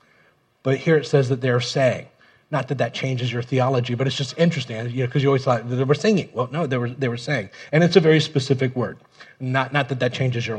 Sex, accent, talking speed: male, American, 255 wpm